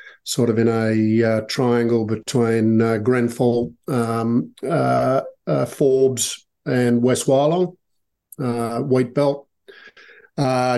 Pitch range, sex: 115-135 Hz, male